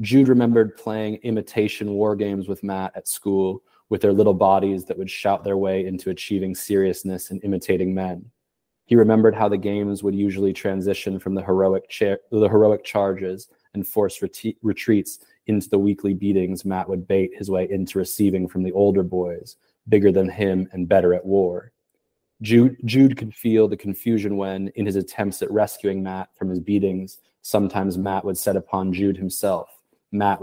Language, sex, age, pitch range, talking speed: English, male, 20-39, 95-105 Hz, 180 wpm